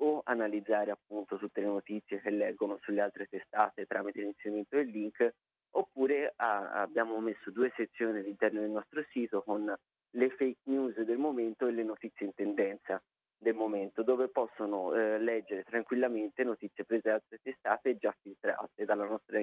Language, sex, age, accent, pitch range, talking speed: Italian, male, 30-49, native, 105-125 Hz, 160 wpm